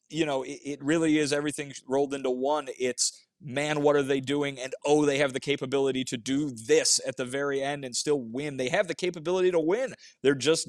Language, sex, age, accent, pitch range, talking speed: English, male, 30-49, American, 115-140 Hz, 220 wpm